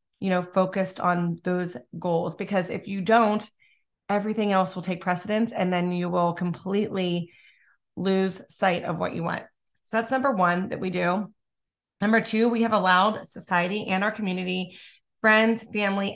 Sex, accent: female, American